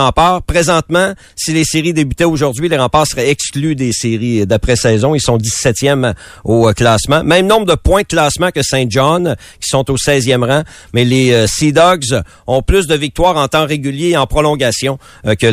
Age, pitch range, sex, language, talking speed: 50-69, 120-150 Hz, male, French, 190 wpm